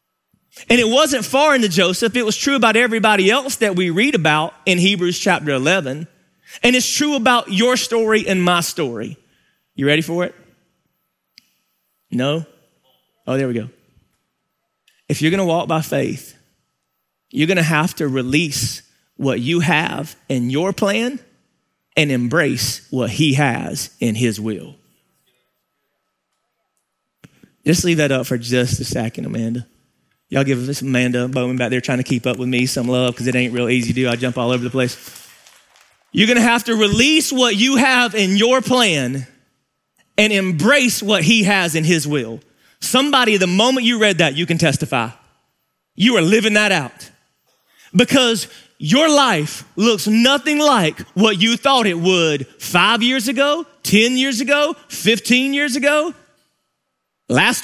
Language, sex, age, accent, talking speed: English, male, 30-49, American, 165 wpm